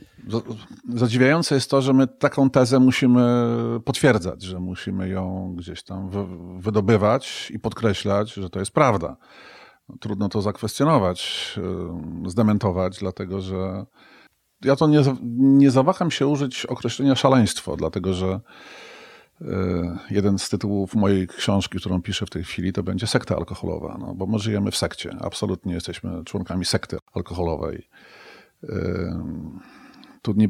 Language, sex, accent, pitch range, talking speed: Polish, male, native, 95-115 Hz, 125 wpm